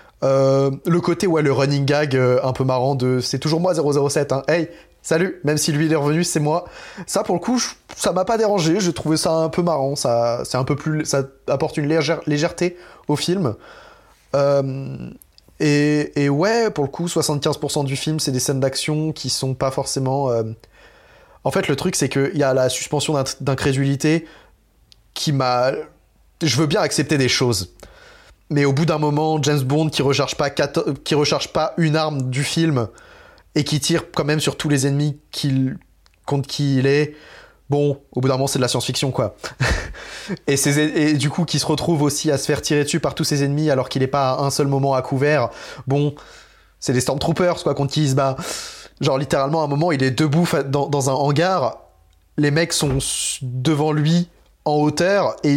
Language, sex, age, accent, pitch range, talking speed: French, male, 20-39, French, 135-160 Hz, 205 wpm